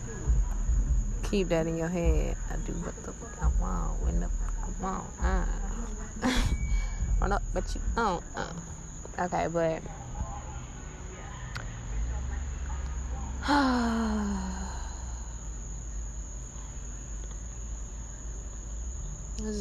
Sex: female